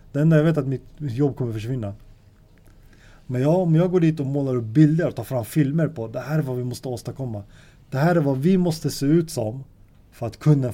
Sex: male